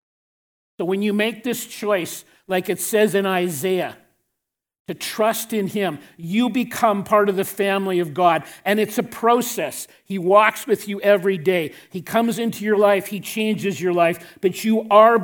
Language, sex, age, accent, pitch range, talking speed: English, male, 50-69, American, 180-215 Hz, 175 wpm